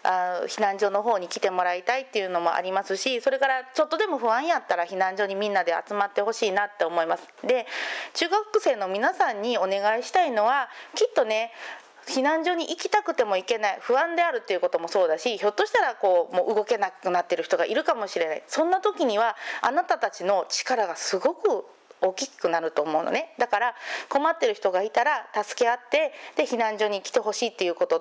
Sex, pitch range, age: female, 205-345 Hz, 30-49